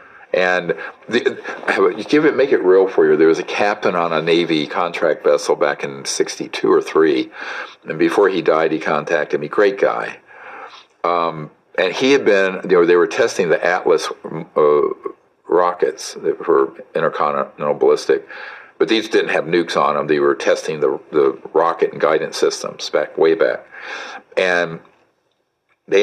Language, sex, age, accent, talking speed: English, male, 50-69, American, 165 wpm